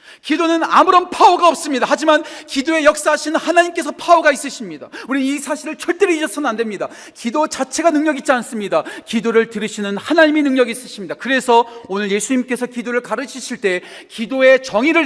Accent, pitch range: native, 190-285 Hz